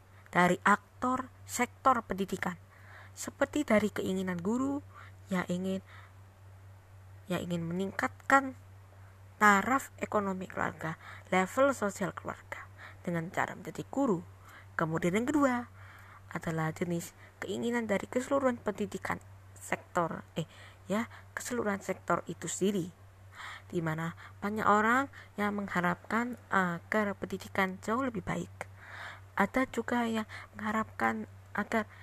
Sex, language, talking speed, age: female, Indonesian, 105 wpm, 20-39